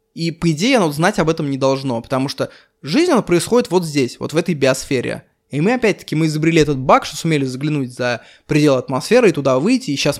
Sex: male